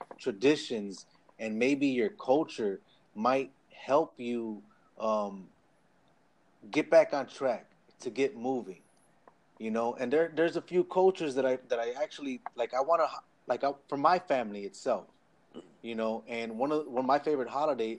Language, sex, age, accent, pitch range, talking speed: English, male, 30-49, American, 110-135 Hz, 165 wpm